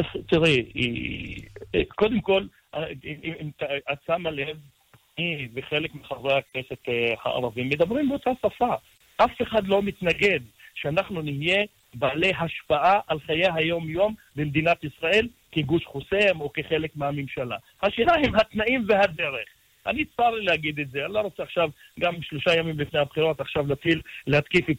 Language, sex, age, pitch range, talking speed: Hebrew, male, 40-59, 145-200 Hz, 135 wpm